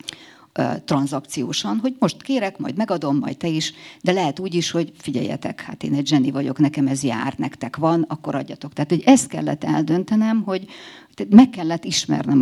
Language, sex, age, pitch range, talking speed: Hungarian, female, 50-69, 145-225 Hz, 175 wpm